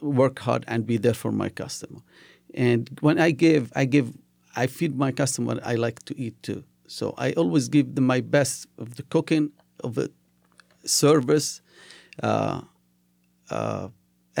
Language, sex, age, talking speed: English, male, 50-69, 165 wpm